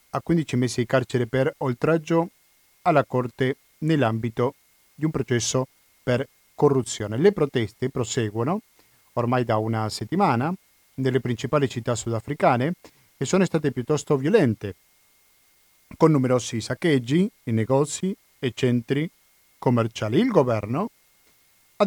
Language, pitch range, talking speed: Italian, 125-160 Hz, 115 wpm